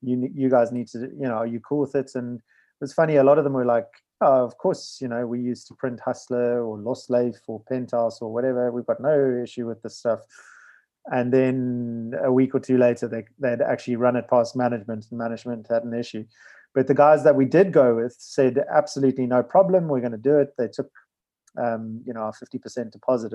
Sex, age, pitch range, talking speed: male, 30-49, 115-135 Hz, 230 wpm